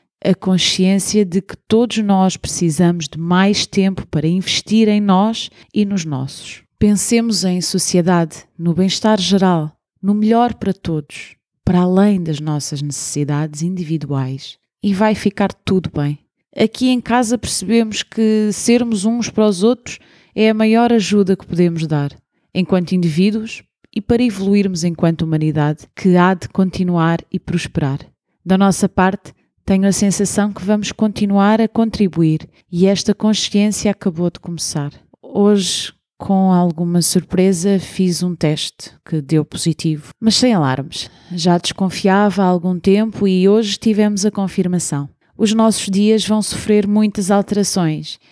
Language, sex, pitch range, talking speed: English, female, 170-210 Hz, 145 wpm